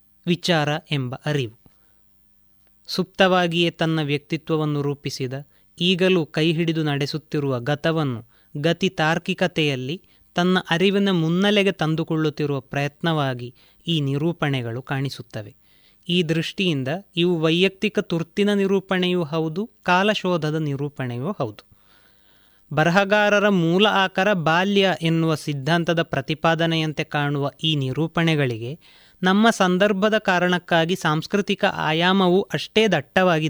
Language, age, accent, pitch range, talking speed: Kannada, 20-39, native, 150-185 Hz, 85 wpm